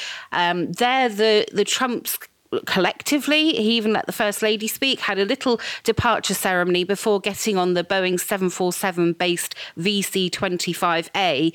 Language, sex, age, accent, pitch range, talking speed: English, female, 40-59, British, 180-225 Hz, 130 wpm